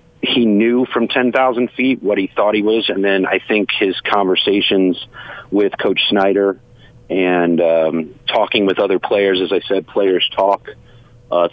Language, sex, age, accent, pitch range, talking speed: English, male, 40-59, American, 90-105 Hz, 165 wpm